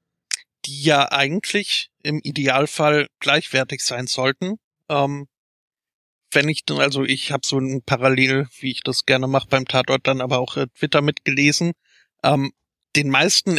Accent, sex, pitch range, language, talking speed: German, male, 130-145 Hz, German, 150 wpm